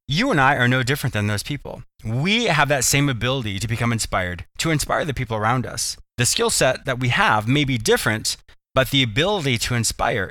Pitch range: 110-155 Hz